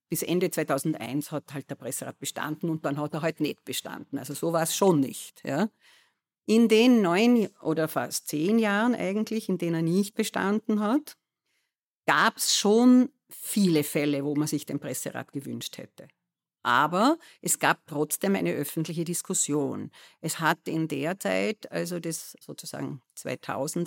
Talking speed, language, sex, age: 160 wpm, German, female, 50-69